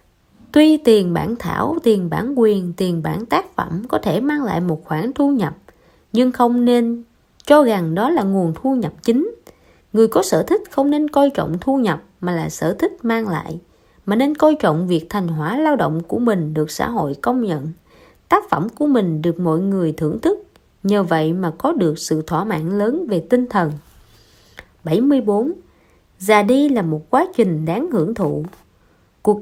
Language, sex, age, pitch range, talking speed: Vietnamese, female, 20-39, 170-275 Hz, 190 wpm